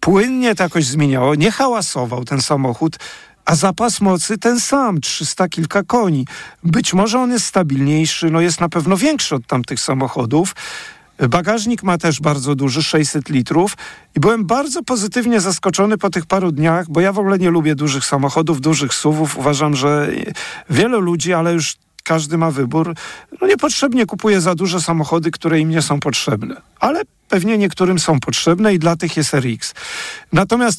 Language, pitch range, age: Polish, 150-195 Hz, 40-59